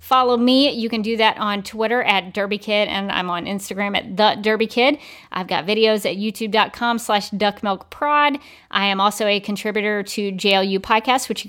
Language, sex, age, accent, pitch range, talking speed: English, female, 40-59, American, 195-230 Hz, 190 wpm